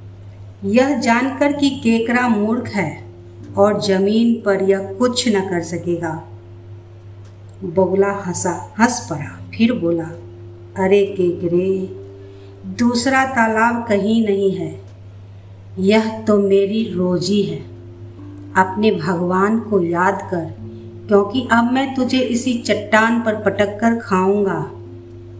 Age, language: 50-69, Hindi